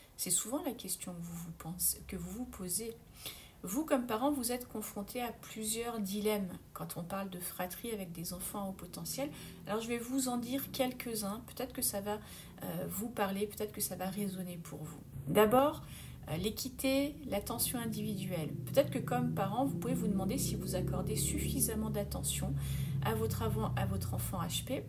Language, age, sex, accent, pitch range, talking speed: French, 40-59, female, French, 190-245 Hz, 185 wpm